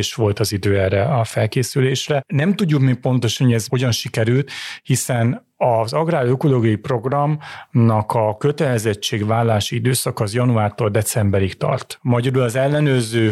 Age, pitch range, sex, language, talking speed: 30-49, 105-130 Hz, male, Hungarian, 130 wpm